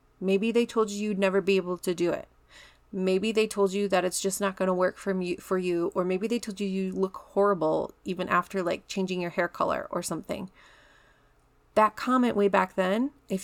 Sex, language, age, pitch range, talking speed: female, English, 30-49, 185-220 Hz, 210 wpm